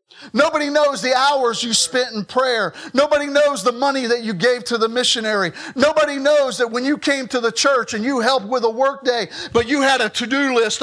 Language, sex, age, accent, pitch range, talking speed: English, male, 50-69, American, 175-275 Hz, 220 wpm